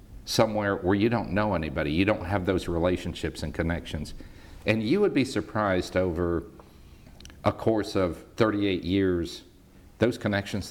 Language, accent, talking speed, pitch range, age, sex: English, American, 145 wpm, 80-100 Hz, 50-69, male